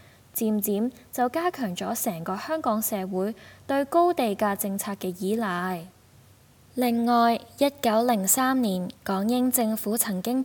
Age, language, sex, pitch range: 10-29, Chinese, female, 185-245 Hz